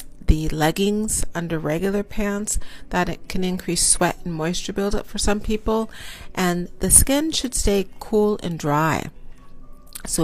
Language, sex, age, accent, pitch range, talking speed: English, female, 40-59, American, 165-210 Hz, 145 wpm